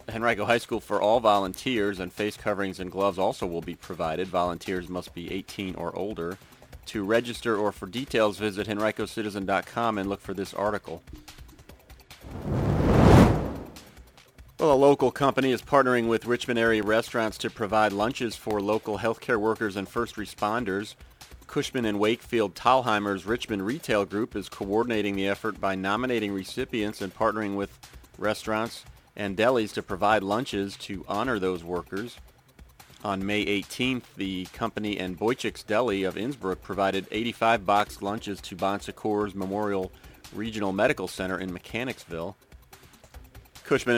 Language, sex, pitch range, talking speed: English, male, 95-115 Hz, 140 wpm